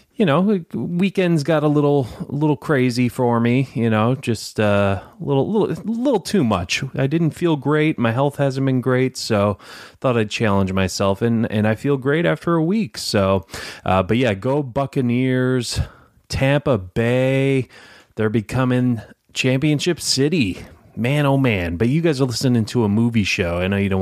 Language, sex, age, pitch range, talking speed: English, male, 30-49, 105-140 Hz, 175 wpm